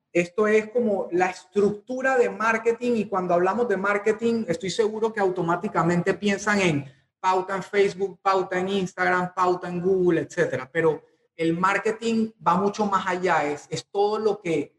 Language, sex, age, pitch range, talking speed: Spanish, male, 30-49, 165-200 Hz, 160 wpm